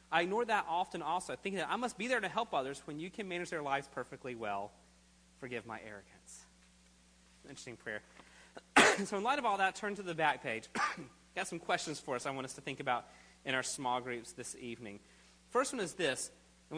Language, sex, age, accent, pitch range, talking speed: English, male, 30-49, American, 120-185 Hz, 215 wpm